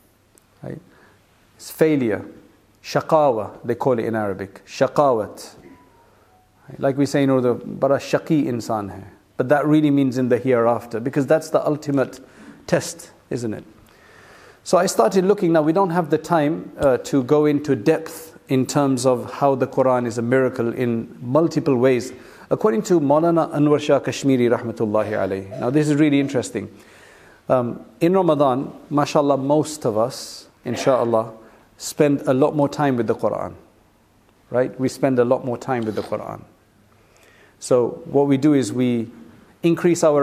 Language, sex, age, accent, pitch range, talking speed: English, male, 50-69, South African, 120-150 Hz, 155 wpm